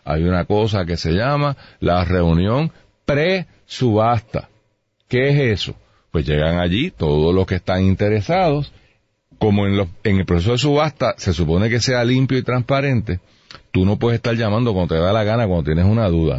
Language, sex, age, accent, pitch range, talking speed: Spanish, male, 40-59, American, 100-155 Hz, 180 wpm